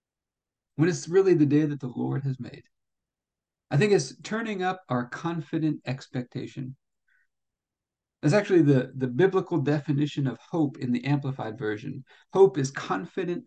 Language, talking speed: English, 145 wpm